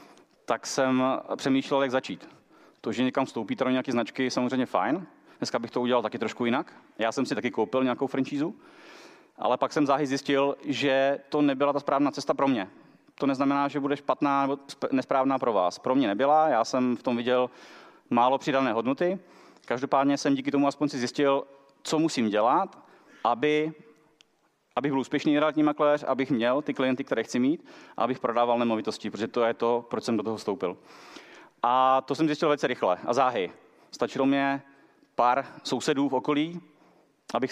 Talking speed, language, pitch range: 180 wpm, Czech, 125-145 Hz